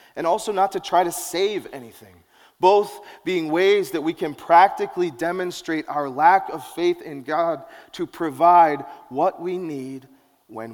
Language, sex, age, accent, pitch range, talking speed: English, male, 30-49, American, 135-175 Hz, 155 wpm